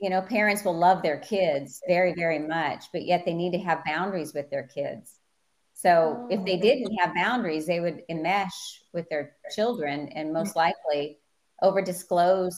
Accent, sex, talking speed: American, female, 170 wpm